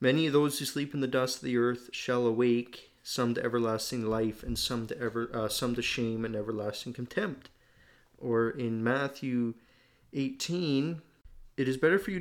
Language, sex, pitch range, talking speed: English, male, 110-130 Hz, 180 wpm